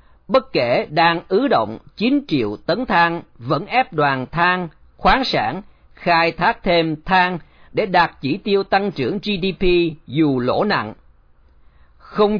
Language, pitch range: Vietnamese, 155-205 Hz